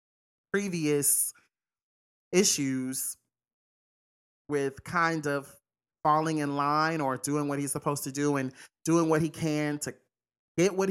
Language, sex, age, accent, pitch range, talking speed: English, male, 30-49, American, 140-160 Hz, 125 wpm